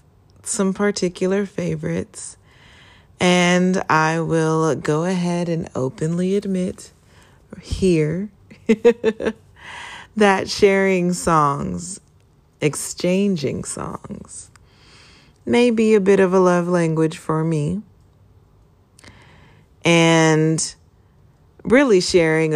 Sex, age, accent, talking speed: female, 30-49, American, 80 wpm